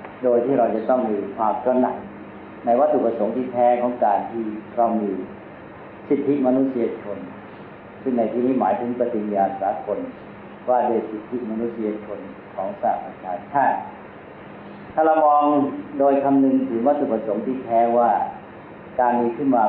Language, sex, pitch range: Thai, male, 110-135 Hz